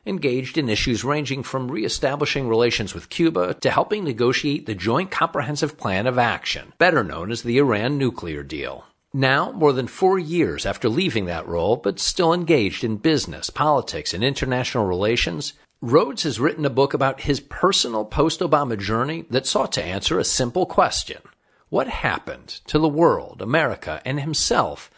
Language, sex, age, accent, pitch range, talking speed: English, male, 50-69, American, 115-155 Hz, 165 wpm